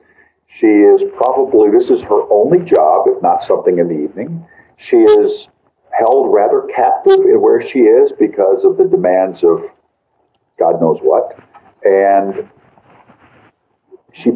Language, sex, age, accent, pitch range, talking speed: English, male, 50-69, American, 355-425 Hz, 140 wpm